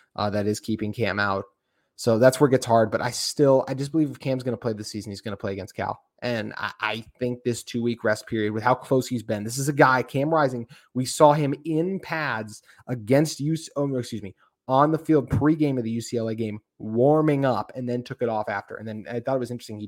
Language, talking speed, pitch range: English, 260 wpm, 105-135 Hz